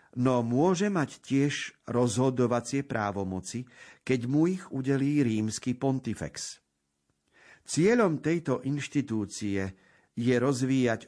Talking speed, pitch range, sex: 90 wpm, 105-140 Hz, male